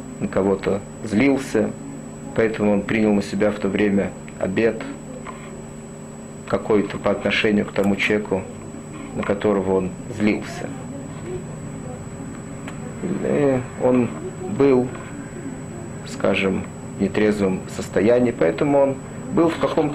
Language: Russian